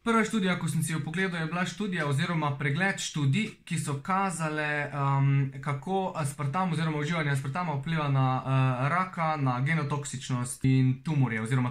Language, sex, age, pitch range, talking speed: English, male, 20-39, 130-170 Hz, 160 wpm